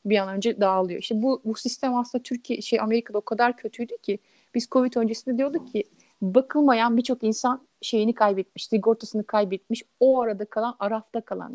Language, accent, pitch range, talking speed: Turkish, native, 210-245 Hz, 170 wpm